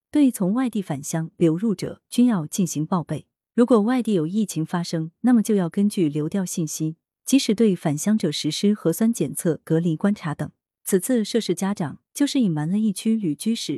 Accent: native